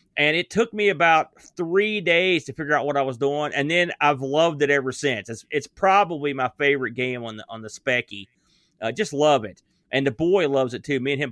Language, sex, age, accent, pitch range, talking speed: English, male, 30-49, American, 130-175 Hz, 245 wpm